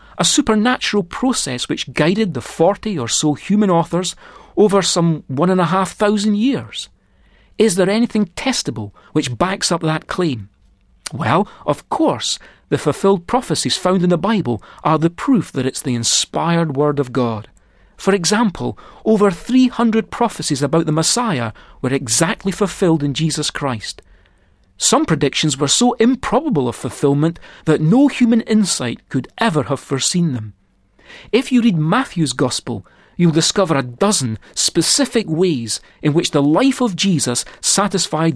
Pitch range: 140-205 Hz